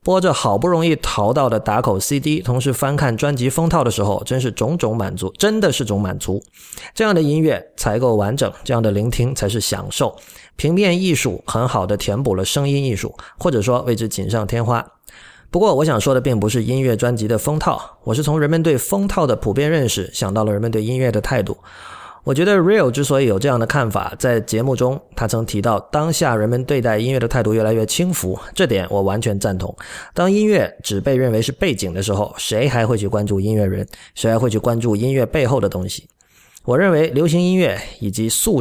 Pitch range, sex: 105-150 Hz, male